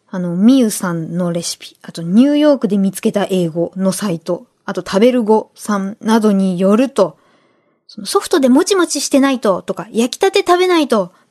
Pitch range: 200-295 Hz